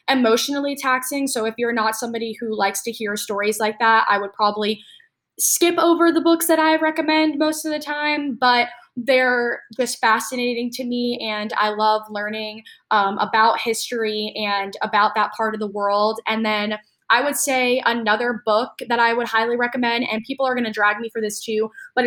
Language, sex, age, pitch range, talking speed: English, female, 10-29, 215-250 Hz, 195 wpm